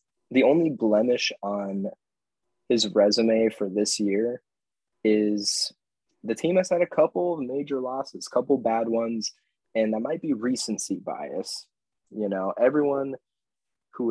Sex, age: male, 20-39